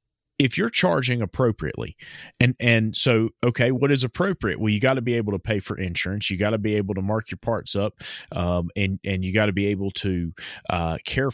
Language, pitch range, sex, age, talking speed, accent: English, 95-120 Hz, male, 30-49, 220 wpm, American